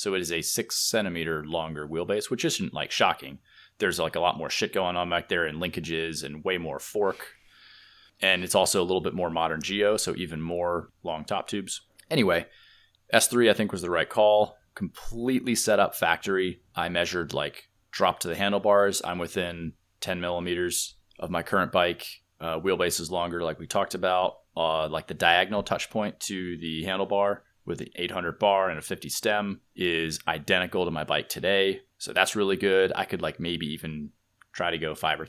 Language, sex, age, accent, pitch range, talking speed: English, male, 30-49, American, 85-105 Hz, 195 wpm